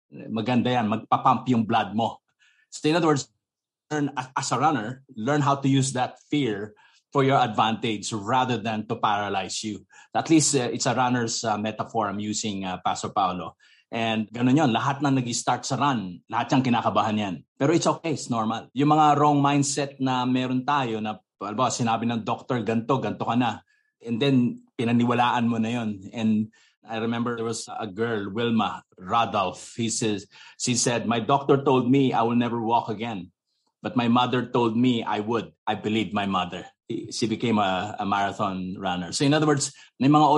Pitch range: 110-140 Hz